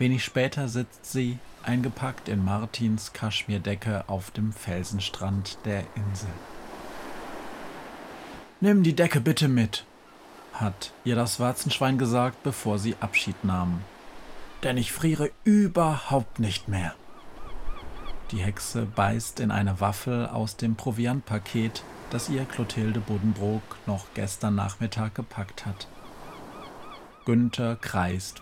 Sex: male